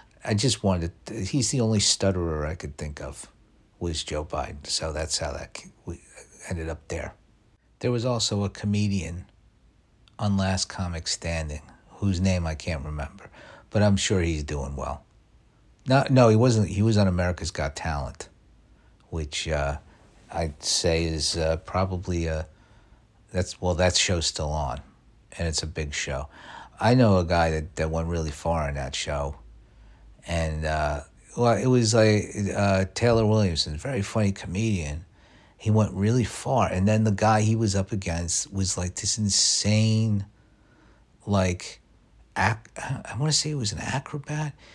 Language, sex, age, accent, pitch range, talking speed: English, male, 50-69, American, 80-110 Hz, 170 wpm